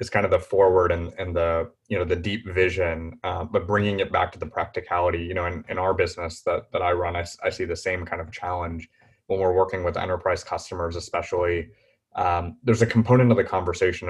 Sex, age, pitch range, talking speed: male, 20-39, 85-115 Hz, 220 wpm